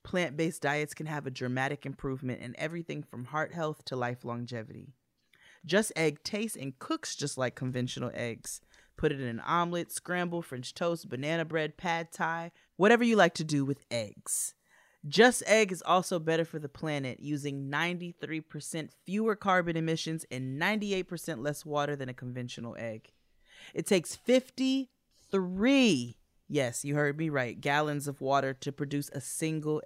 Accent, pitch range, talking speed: American, 135-180 Hz, 160 wpm